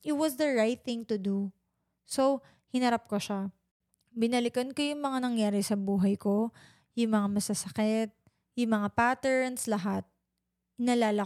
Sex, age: female, 20-39